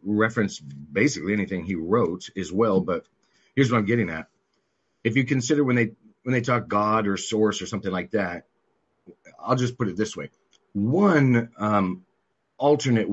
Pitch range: 95-120 Hz